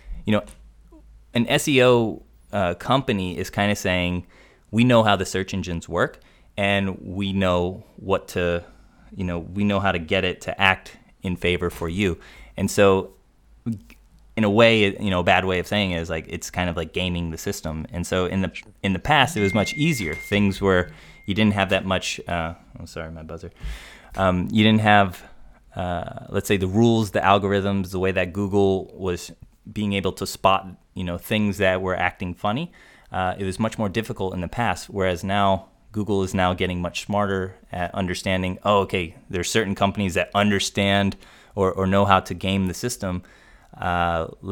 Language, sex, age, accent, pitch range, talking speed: English, male, 30-49, American, 90-100 Hz, 195 wpm